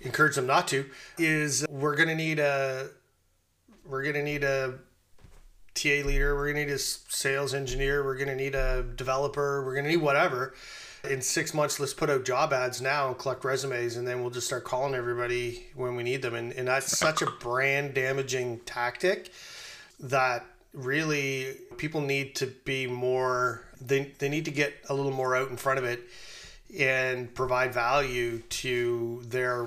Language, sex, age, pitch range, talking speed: English, male, 30-49, 125-140 Hz, 175 wpm